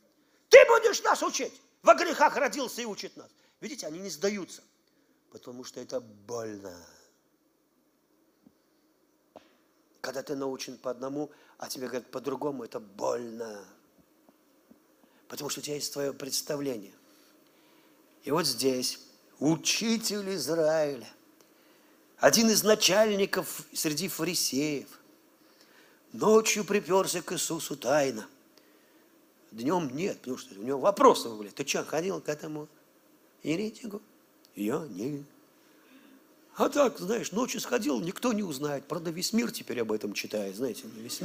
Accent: native